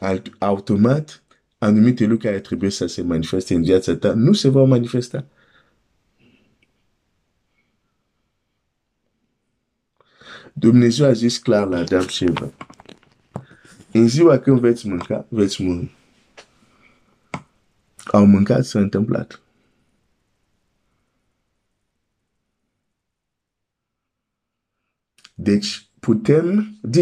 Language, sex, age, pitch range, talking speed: Romanian, male, 50-69, 100-125 Hz, 55 wpm